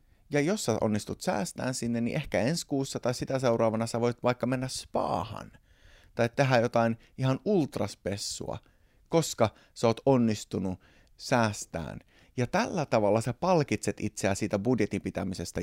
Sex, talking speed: male, 140 wpm